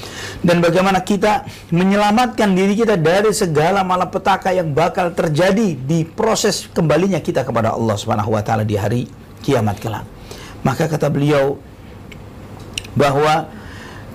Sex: male